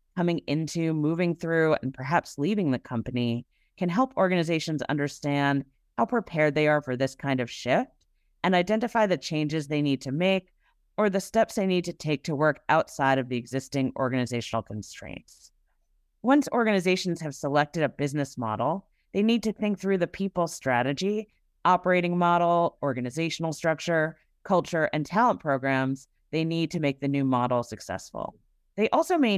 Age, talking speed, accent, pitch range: 30-49, 160 wpm, American, 135-175 Hz